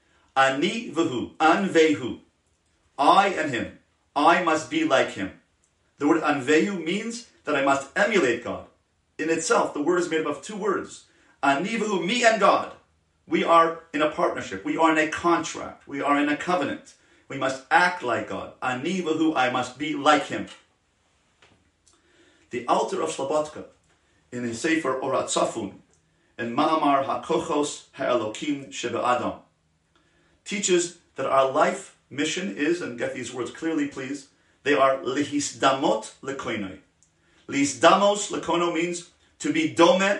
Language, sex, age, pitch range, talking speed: English, male, 40-59, 135-175 Hz, 140 wpm